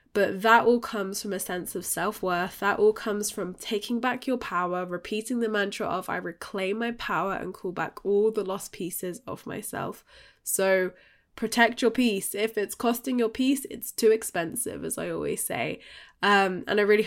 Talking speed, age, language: 190 wpm, 10-29, English